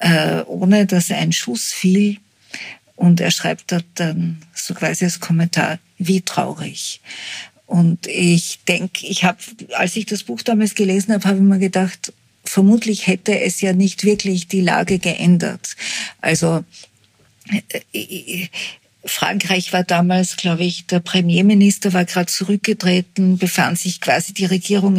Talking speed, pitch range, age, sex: 135 wpm, 175-200 Hz, 50-69, female